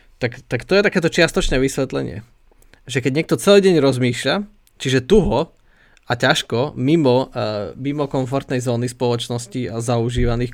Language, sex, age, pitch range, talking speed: Slovak, male, 20-39, 120-145 Hz, 135 wpm